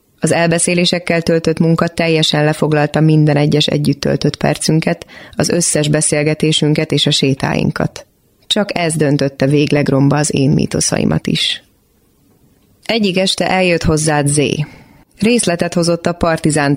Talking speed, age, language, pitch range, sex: 125 wpm, 30-49, Hungarian, 145-170 Hz, female